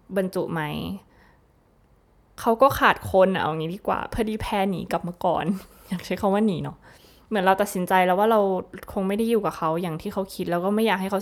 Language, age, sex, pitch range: Thai, 20-39, female, 175-220 Hz